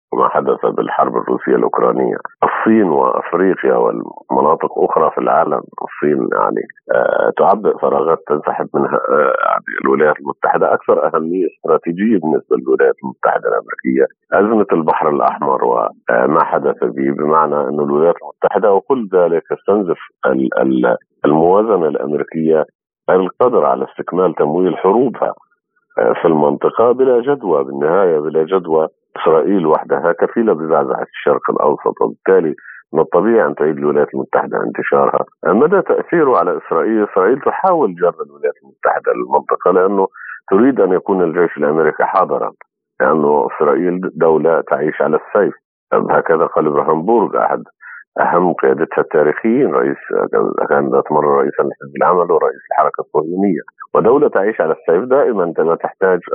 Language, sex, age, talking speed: Arabic, male, 50-69, 120 wpm